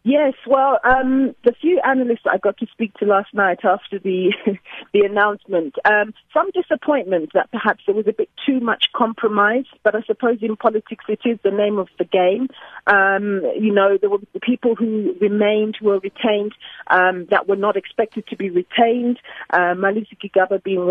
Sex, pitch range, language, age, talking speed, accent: female, 185-230 Hz, English, 40-59, 185 wpm, British